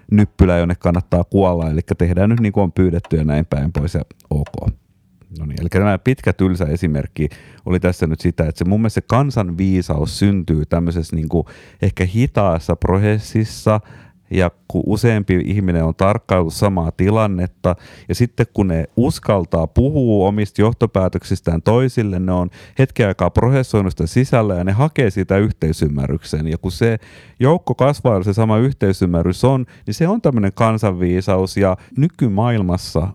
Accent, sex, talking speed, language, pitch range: native, male, 150 wpm, Finnish, 90-115 Hz